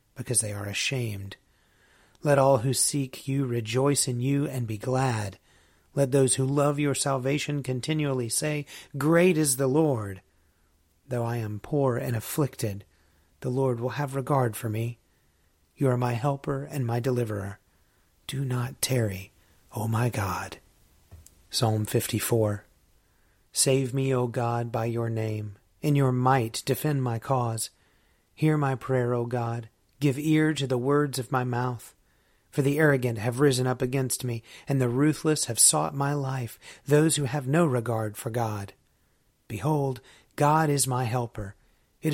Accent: American